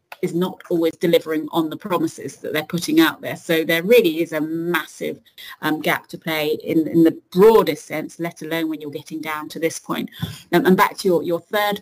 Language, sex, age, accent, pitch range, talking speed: English, female, 30-49, British, 160-195 Hz, 220 wpm